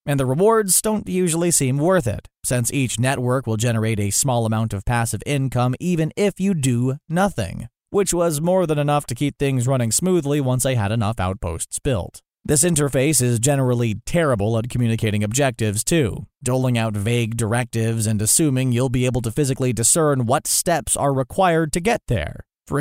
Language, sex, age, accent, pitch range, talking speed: English, male, 30-49, American, 115-160 Hz, 180 wpm